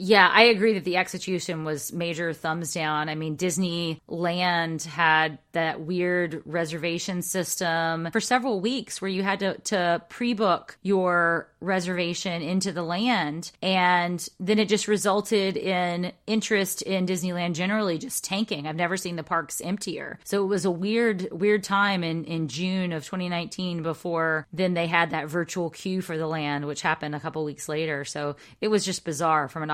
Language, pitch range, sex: English, 165-195 Hz, female